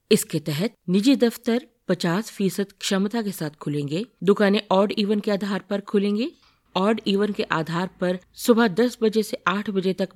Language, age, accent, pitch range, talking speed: Hindi, 50-69, native, 160-215 Hz, 165 wpm